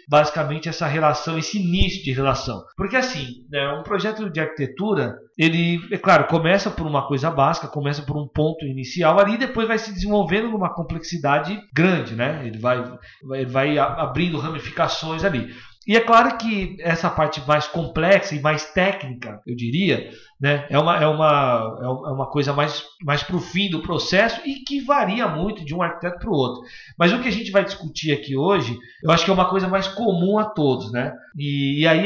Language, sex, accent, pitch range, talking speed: Portuguese, male, Brazilian, 135-185 Hz, 190 wpm